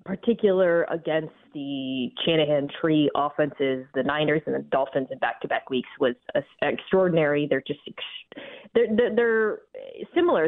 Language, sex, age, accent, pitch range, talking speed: English, female, 20-39, American, 150-180 Hz, 125 wpm